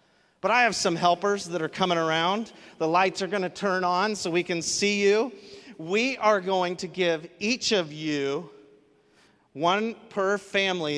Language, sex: English, male